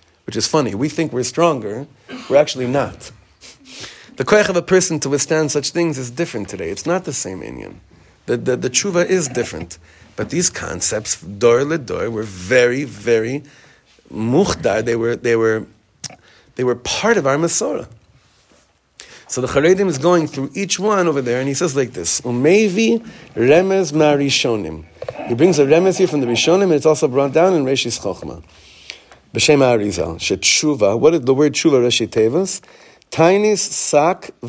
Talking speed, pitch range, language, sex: 170 wpm, 115-170 Hz, English, male